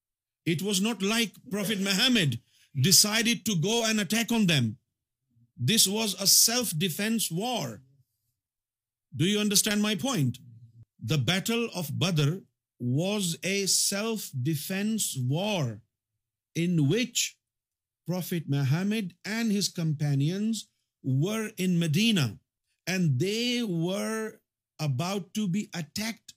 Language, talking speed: Urdu, 110 wpm